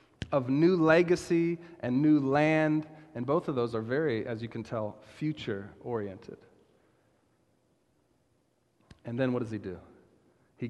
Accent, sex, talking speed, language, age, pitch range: American, male, 135 wpm, English, 40-59, 115-145 Hz